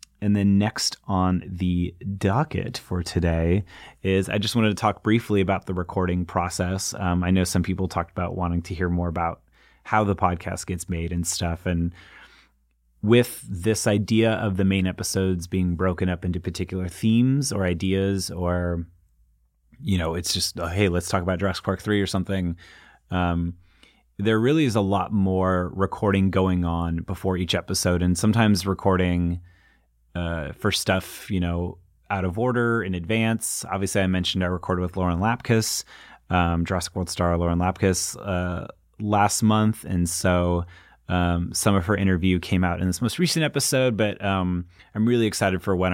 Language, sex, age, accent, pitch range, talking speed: English, male, 30-49, American, 90-100 Hz, 170 wpm